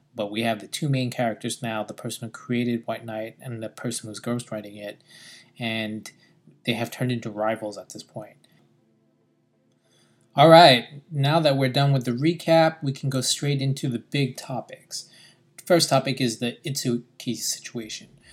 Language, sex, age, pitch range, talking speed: English, male, 20-39, 115-135 Hz, 170 wpm